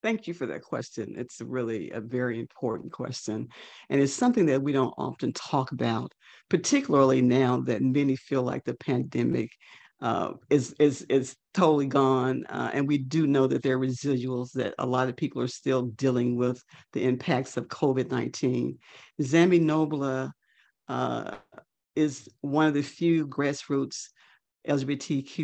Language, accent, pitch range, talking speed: English, American, 130-150 Hz, 155 wpm